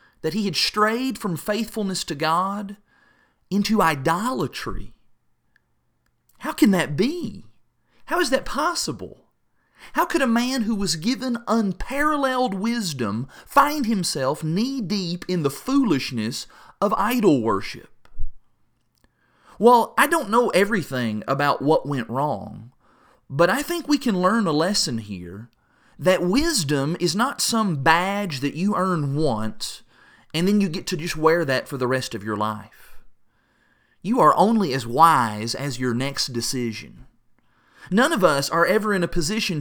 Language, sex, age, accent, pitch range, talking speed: English, male, 30-49, American, 140-220 Hz, 145 wpm